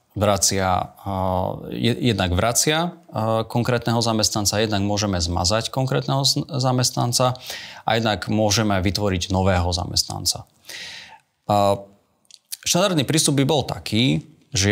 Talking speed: 105 wpm